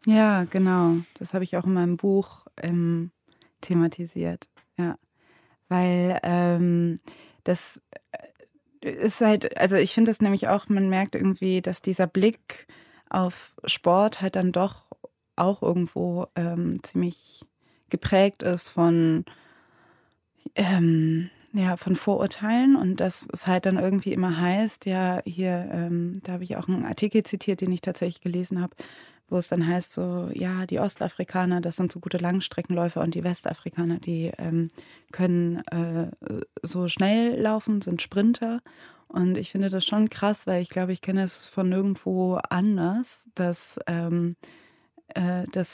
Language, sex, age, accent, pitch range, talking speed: German, female, 20-39, German, 170-195 Hz, 145 wpm